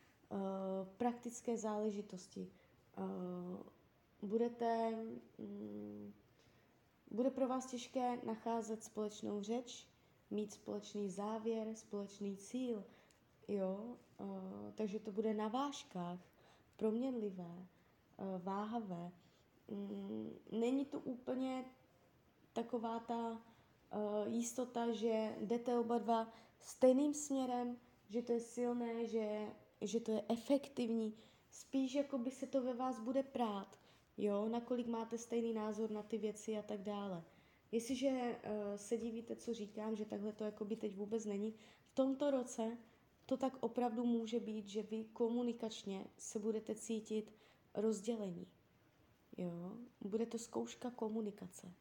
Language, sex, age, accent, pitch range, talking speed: Czech, female, 20-39, native, 205-240 Hz, 110 wpm